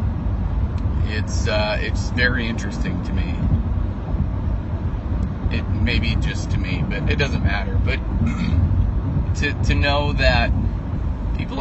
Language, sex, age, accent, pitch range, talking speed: English, male, 30-49, American, 85-95 Hz, 120 wpm